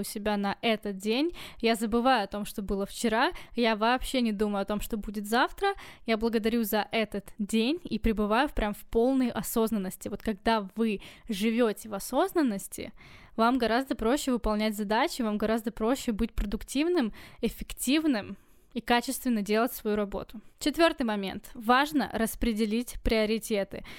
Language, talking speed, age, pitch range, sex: Russian, 150 wpm, 10-29, 215-250 Hz, female